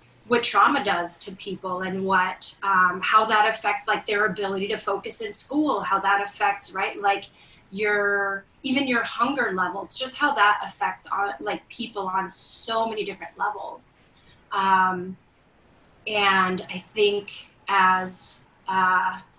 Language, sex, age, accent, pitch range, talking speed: English, female, 20-39, American, 195-230 Hz, 140 wpm